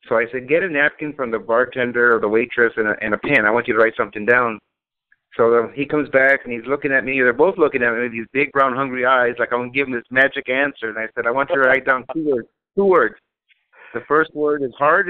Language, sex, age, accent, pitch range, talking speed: English, male, 50-69, American, 120-150 Hz, 275 wpm